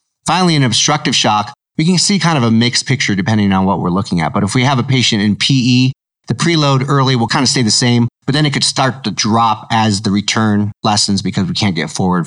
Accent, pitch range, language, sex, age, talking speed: American, 100-130 Hz, English, male, 30-49, 250 wpm